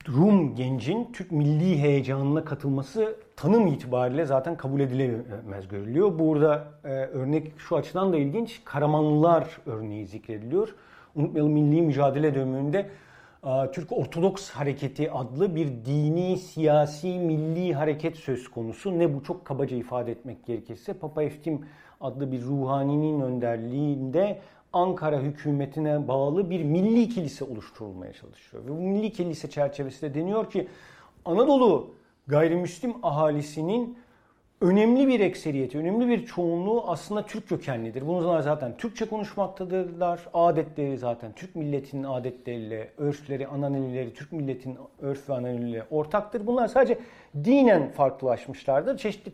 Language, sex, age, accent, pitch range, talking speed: Turkish, male, 50-69, native, 135-185 Hz, 120 wpm